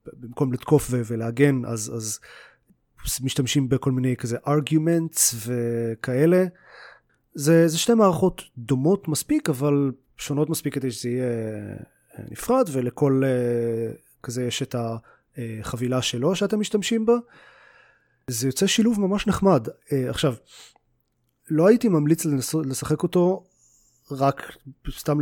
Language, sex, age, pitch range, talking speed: Hebrew, male, 30-49, 125-160 Hz, 115 wpm